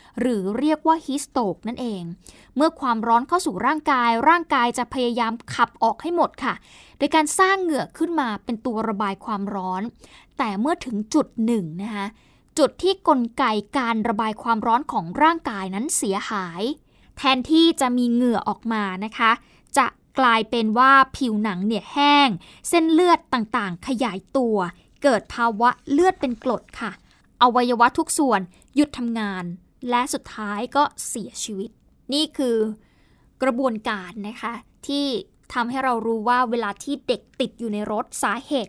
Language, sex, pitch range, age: Thai, female, 225-285 Hz, 20-39